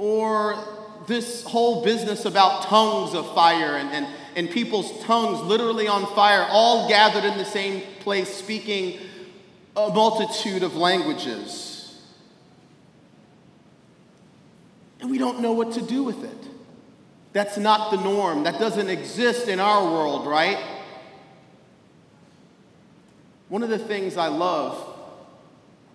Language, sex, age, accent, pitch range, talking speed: English, male, 40-59, American, 180-230 Hz, 120 wpm